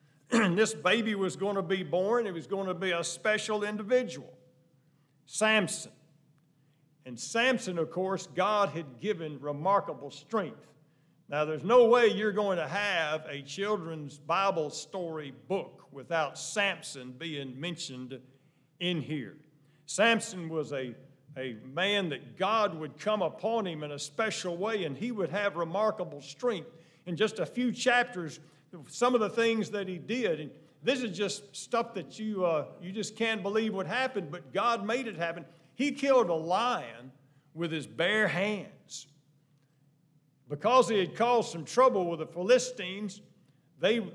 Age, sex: 50-69, male